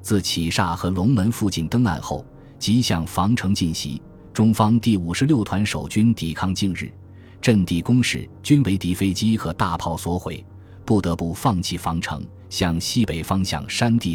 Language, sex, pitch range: Chinese, male, 85-115 Hz